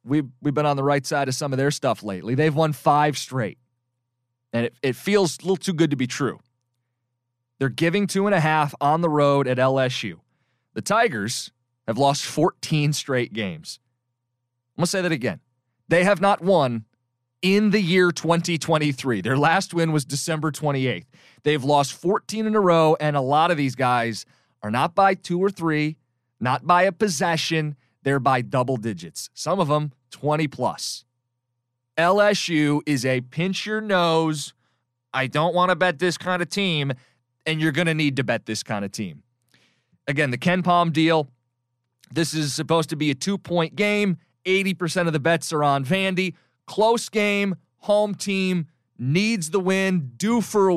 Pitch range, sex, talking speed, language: 125-175 Hz, male, 175 wpm, English